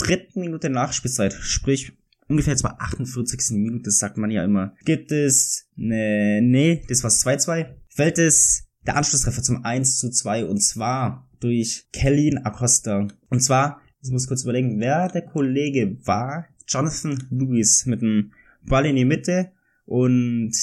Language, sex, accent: German, male, German